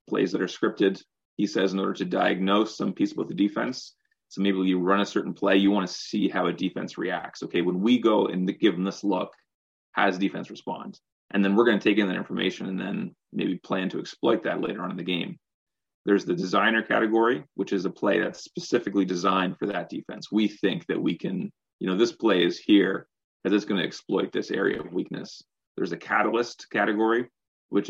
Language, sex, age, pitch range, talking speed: English, male, 30-49, 95-110 Hz, 220 wpm